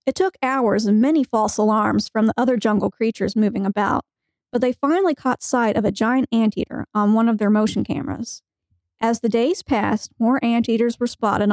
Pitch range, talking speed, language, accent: 215-255 Hz, 195 wpm, English, American